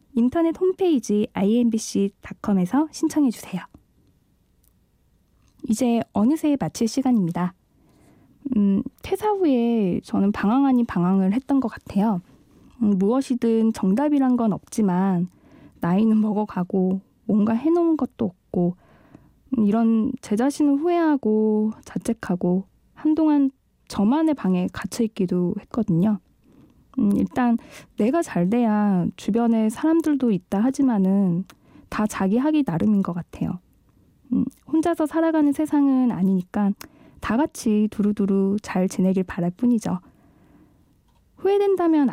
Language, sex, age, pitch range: Korean, female, 20-39, 195-270 Hz